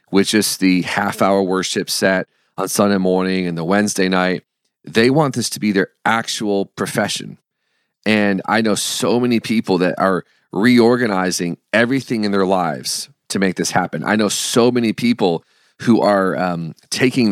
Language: English